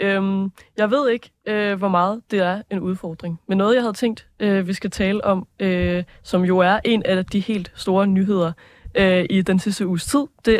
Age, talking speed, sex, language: 20-39, 215 wpm, female, Danish